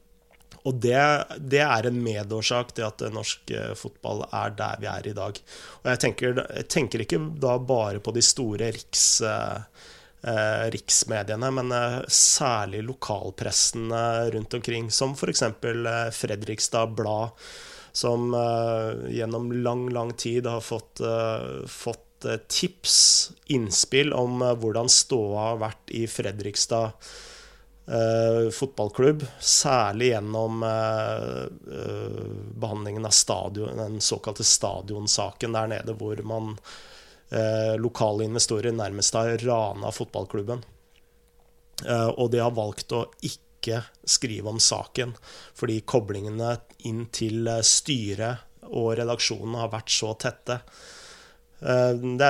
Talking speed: 120 wpm